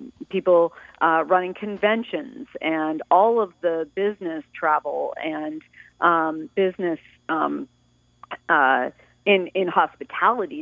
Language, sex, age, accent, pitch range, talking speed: English, female, 40-59, American, 170-210 Hz, 100 wpm